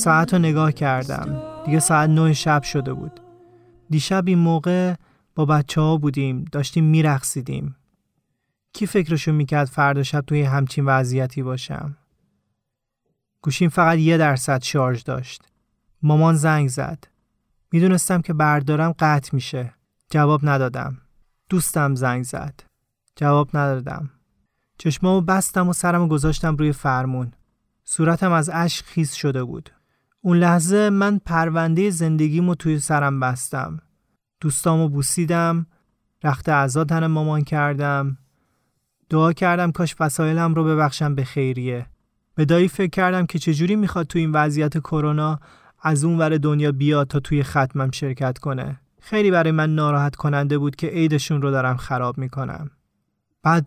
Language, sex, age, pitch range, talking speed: Persian, male, 30-49, 140-165 Hz, 135 wpm